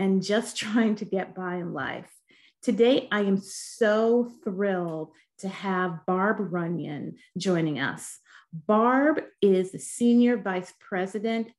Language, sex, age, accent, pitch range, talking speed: English, female, 30-49, American, 190-240 Hz, 130 wpm